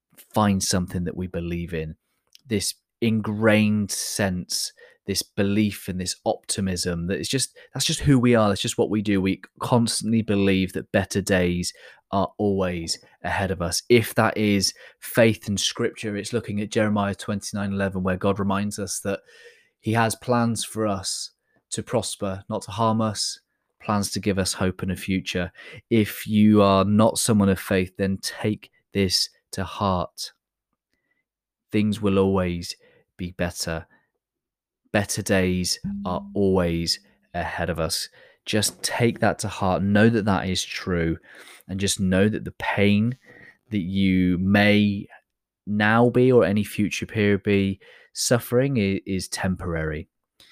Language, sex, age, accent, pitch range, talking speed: English, male, 20-39, British, 95-110 Hz, 150 wpm